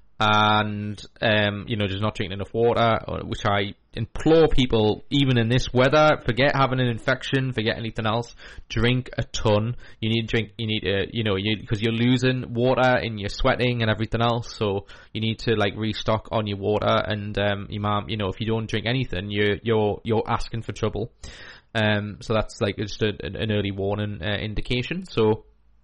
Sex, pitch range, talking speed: male, 105-120 Hz, 195 wpm